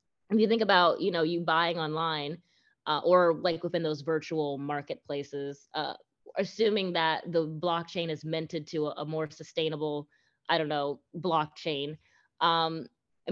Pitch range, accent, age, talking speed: 155-185 Hz, American, 20-39, 155 wpm